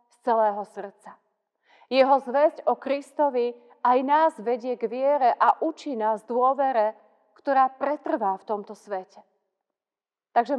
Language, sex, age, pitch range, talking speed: Slovak, female, 40-59, 215-265 Hz, 125 wpm